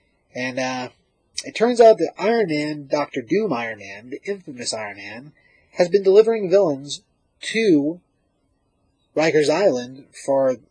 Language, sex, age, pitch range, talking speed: English, male, 30-49, 130-185 Hz, 135 wpm